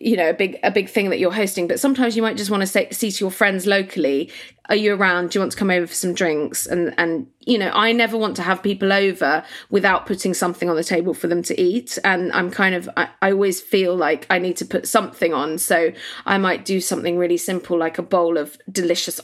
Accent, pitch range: British, 175-200 Hz